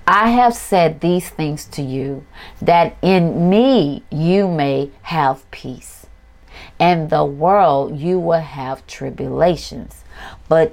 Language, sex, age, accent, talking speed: English, female, 40-59, American, 125 wpm